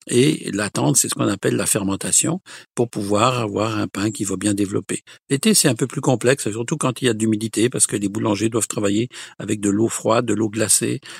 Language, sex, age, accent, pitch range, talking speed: French, male, 60-79, French, 105-120 Hz, 225 wpm